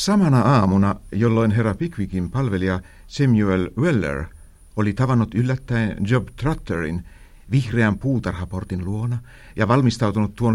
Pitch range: 85-120 Hz